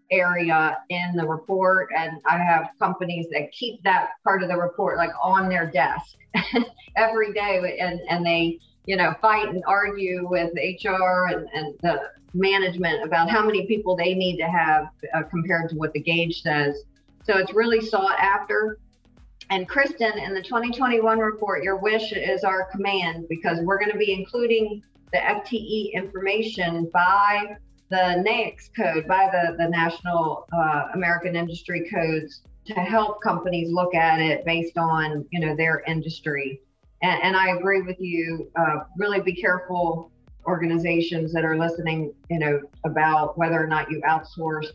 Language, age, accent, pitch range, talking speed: English, 50-69, American, 160-195 Hz, 160 wpm